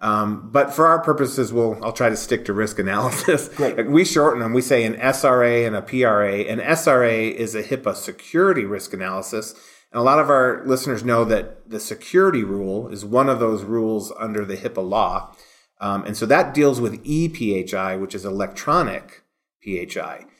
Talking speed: 180 wpm